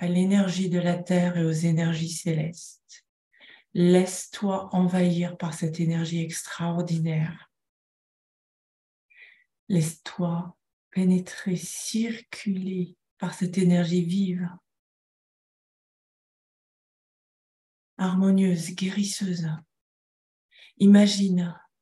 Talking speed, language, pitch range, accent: 70 wpm, French, 175-200 Hz, French